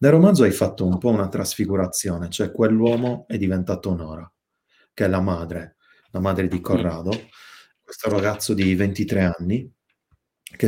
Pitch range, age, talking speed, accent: 95-110 Hz, 30-49, 150 wpm, native